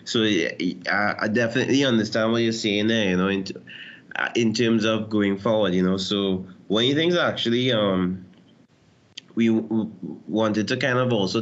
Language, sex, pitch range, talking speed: English, male, 100-120 Hz, 180 wpm